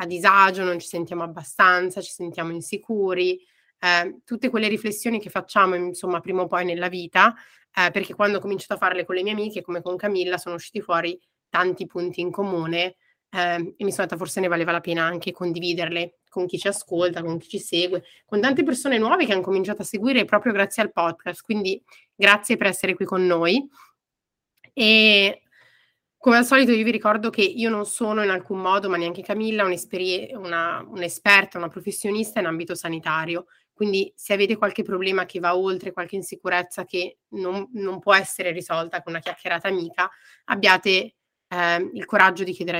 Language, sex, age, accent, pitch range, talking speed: Italian, female, 30-49, native, 175-200 Hz, 185 wpm